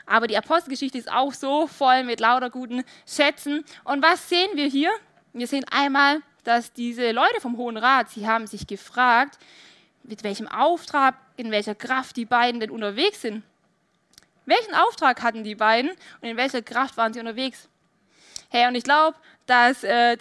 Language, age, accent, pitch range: German, 20-39, German, 225-285 Hz